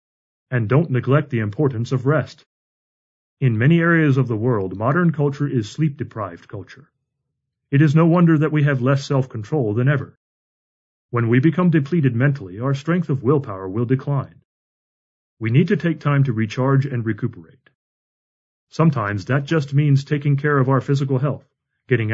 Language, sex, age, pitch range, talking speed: English, male, 40-59, 115-145 Hz, 170 wpm